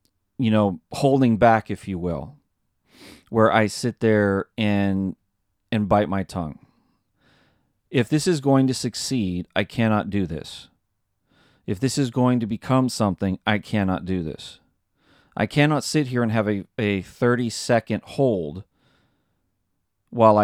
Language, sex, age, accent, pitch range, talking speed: English, male, 30-49, American, 100-125 Hz, 140 wpm